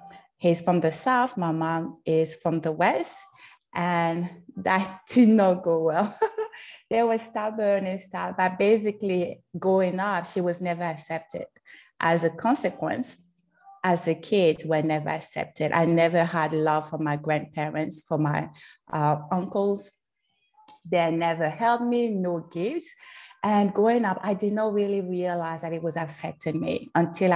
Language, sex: English, female